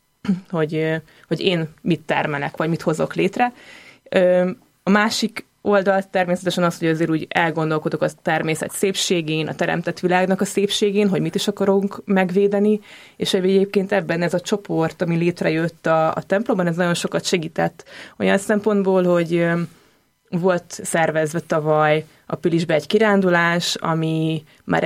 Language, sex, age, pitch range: Hungarian, female, 20-39, 165-200 Hz